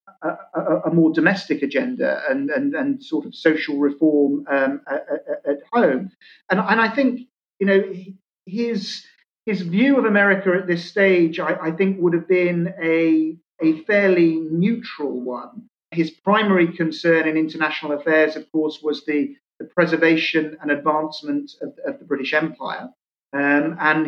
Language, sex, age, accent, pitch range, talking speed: English, male, 40-59, British, 150-195 Hz, 155 wpm